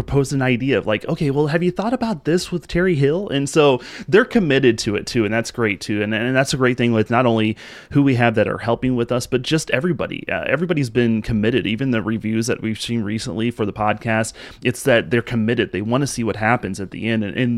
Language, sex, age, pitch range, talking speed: English, male, 30-49, 105-130 Hz, 255 wpm